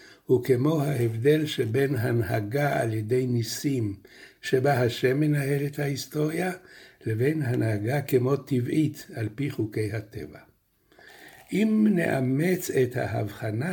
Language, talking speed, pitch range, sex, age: Hebrew, 110 wpm, 115-150 Hz, male, 60-79